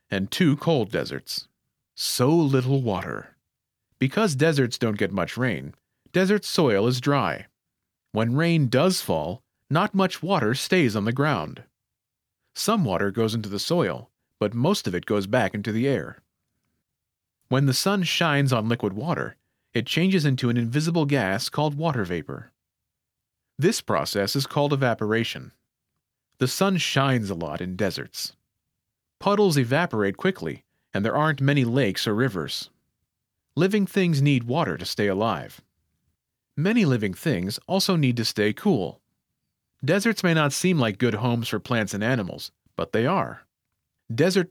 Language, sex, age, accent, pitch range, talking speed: English, male, 40-59, American, 105-155 Hz, 150 wpm